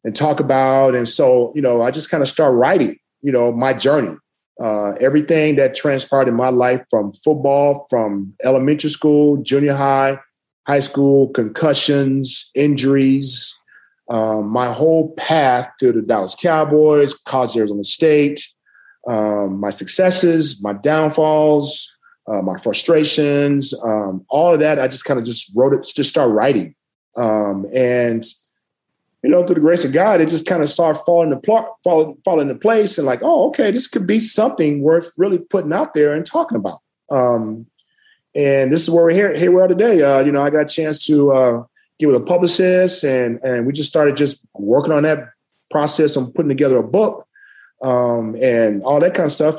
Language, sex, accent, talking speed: English, male, American, 185 wpm